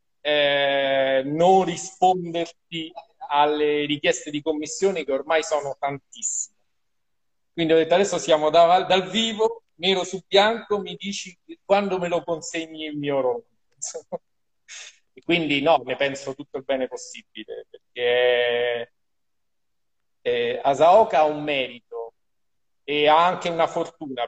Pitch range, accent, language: 140-200 Hz, native, Italian